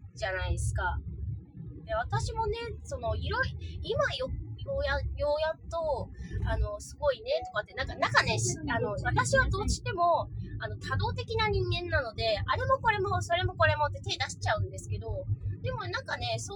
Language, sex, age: Japanese, female, 20-39